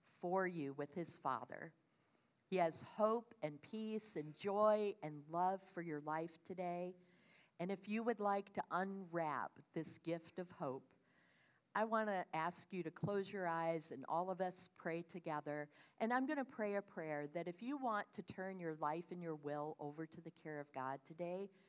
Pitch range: 155-200 Hz